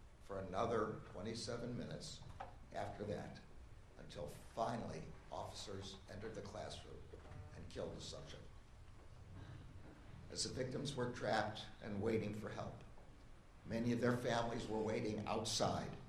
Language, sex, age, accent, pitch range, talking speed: English, male, 60-79, American, 100-125 Hz, 120 wpm